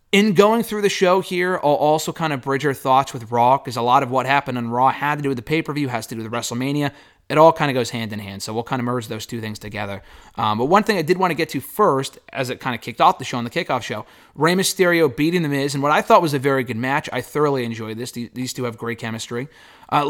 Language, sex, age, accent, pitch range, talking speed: English, male, 30-49, American, 120-165 Hz, 290 wpm